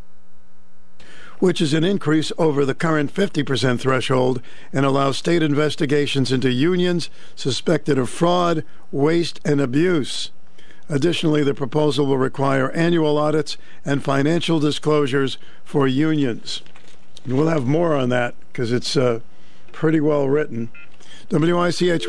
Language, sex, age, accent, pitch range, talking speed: English, male, 60-79, American, 130-155 Hz, 120 wpm